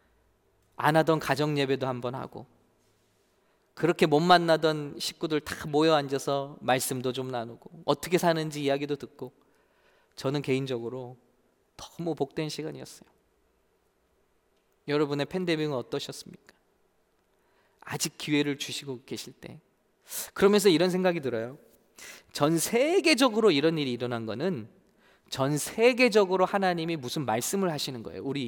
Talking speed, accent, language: 105 wpm, Korean, English